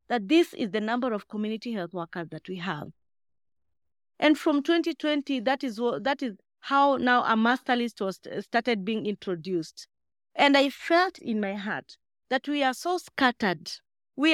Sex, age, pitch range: female, 40-59, 210-290 Hz